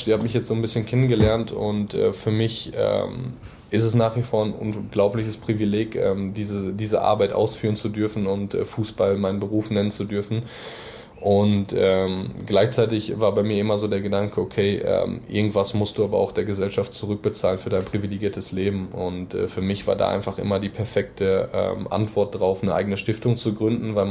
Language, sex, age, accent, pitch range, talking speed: German, male, 20-39, German, 100-110 Hz, 195 wpm